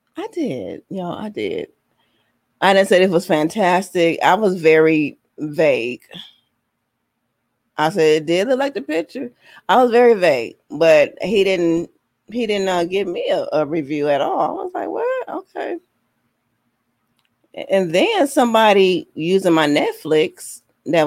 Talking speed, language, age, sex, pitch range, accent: 150 wpm, English, 30-49, female, 150-225 Hz, American